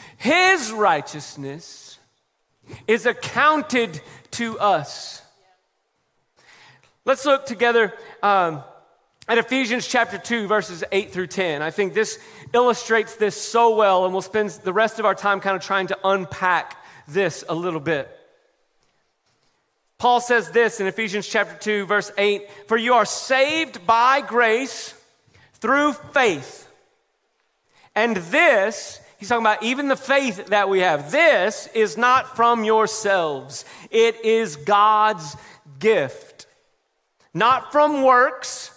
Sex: male